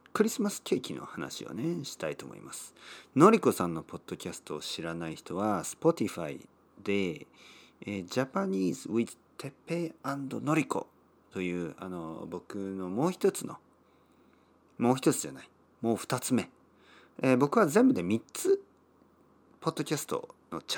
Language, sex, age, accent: Japanese, male, 40-59, native